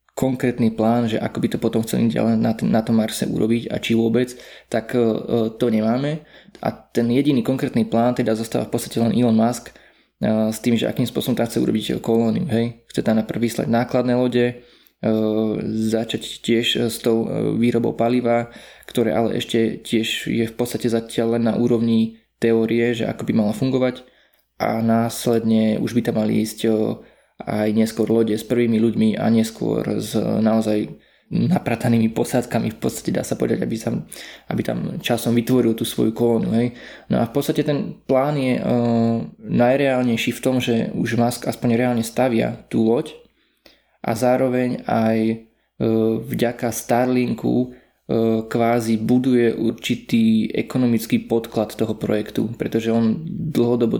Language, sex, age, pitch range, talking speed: Slovak, male, 20-39, 110-125 Hz, 160 wpm